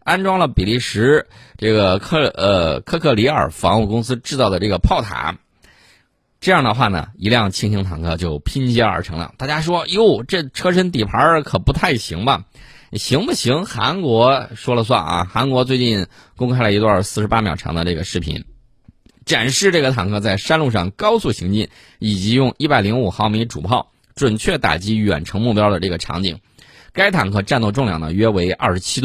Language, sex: Chinese, male